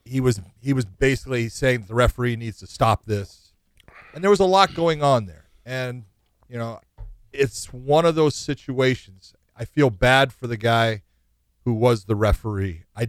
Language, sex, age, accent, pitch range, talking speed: English, male, 40-59, American, 105-130 Hz, 180 wpm